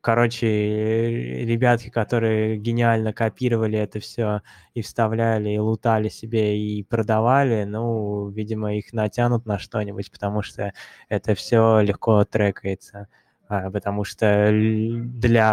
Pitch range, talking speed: 105-115 Hz, 110 wpm